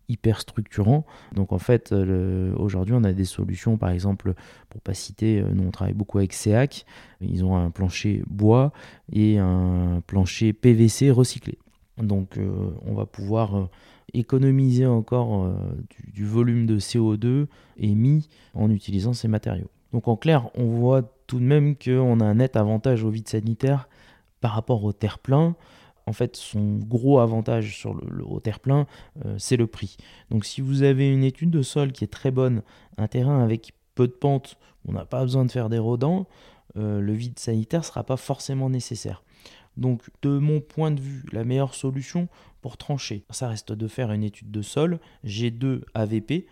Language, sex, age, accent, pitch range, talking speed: French, male, 20-39, French, 105-130 Hz, 180 wpm